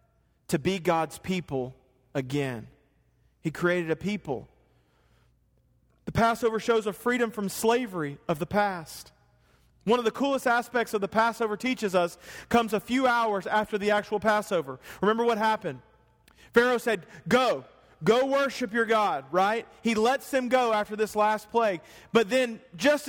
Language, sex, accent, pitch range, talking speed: English, male, American, 150-230 Hz, 155 wpm